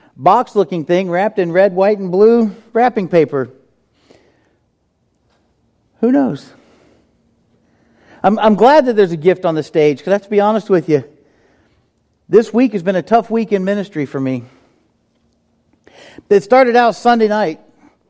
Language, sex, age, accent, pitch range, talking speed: English, male, 40-59, American, 155-205 Hz, 155 wpm